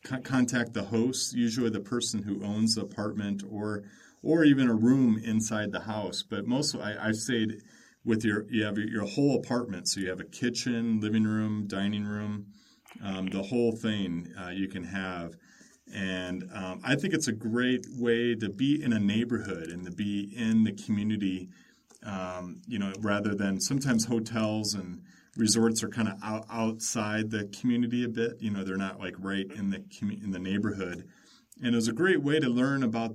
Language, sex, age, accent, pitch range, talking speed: English, male, 30-49, American, 100-120 Hz, 190 wpm